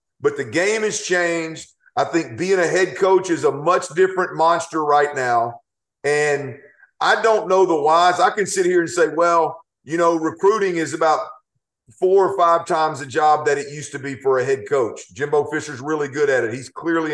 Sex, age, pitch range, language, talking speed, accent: male, 50-69, 150-190 Hz, English, 205 wpm, American